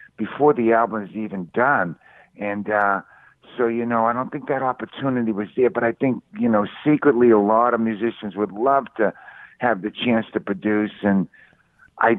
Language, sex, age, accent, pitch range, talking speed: English, male, 50-69, American, 100-115 Hz, 185 wpm